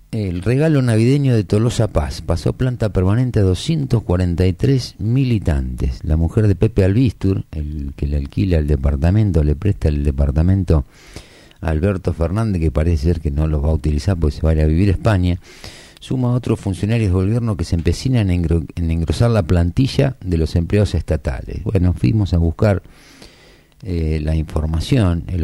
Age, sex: 50-69, male